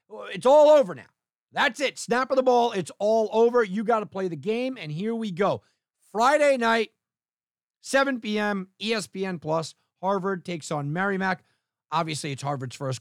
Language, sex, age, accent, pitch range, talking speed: English, male, 50-69, American, 125-190 Hz, 170 wpm